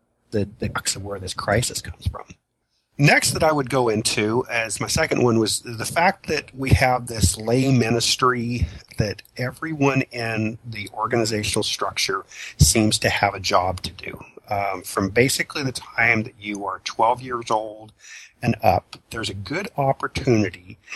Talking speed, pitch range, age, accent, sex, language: 165 wpm, 100-120 Hz, 40-59, American, male, English